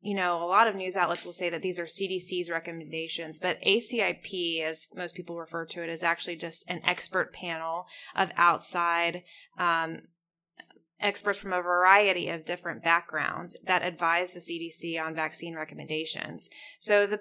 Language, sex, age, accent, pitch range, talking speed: English, female, 10-29, American, 165-190 Hz, 165 wpm